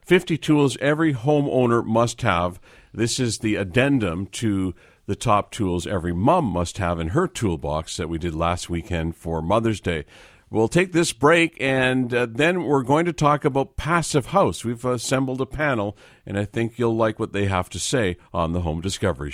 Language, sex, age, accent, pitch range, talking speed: English, male, 50-69, American, 95-130 Hz, 190 wpm